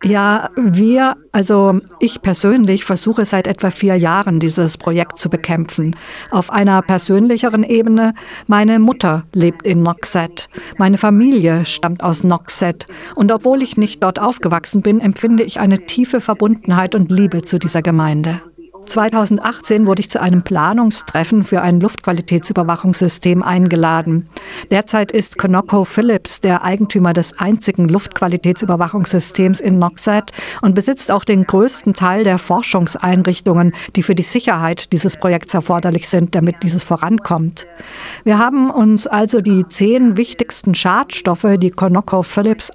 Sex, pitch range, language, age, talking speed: female, 175-215 Hz, German, 50-69, 130 wpm